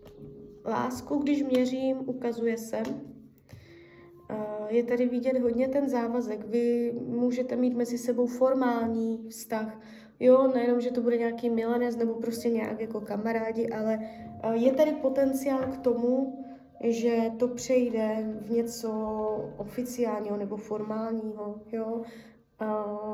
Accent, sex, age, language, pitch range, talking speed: native, female, 20-39, Czech, 220-250 Hz, 120 wpm